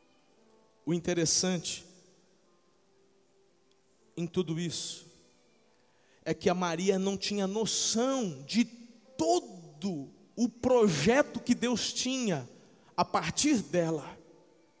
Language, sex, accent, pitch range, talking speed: Portuguese, male, Brazilian, 205-280 Hz, 90 wpm